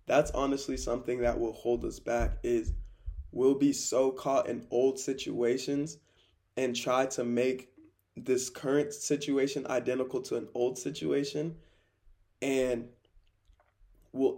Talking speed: 125 wpm